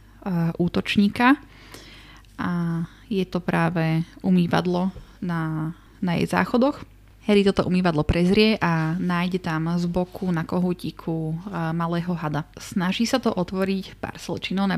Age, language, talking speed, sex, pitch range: 20-39, Slovak, 120 wpm, female, 165-195 Hz